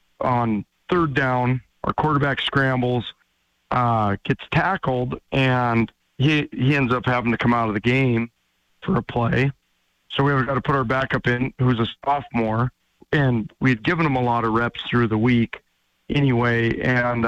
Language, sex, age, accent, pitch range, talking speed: English, male, 40-59, American, 120-140 Hz, 170 wpm